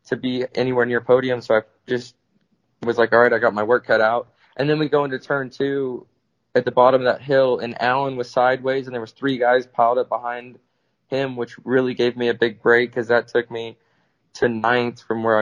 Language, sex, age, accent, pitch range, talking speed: English, male, 20-39, American, 120-130 Hz, 230 wpm